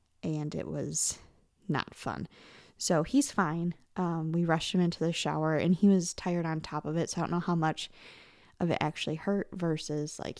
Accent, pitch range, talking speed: American, 165-215 Hz, 200 wpm